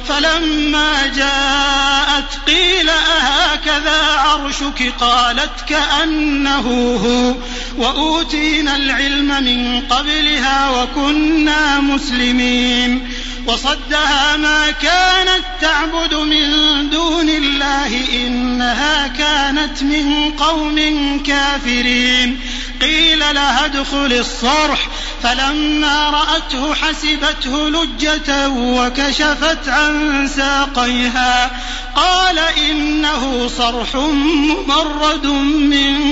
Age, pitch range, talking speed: 30-49, 250-305 Hz, 70 wpm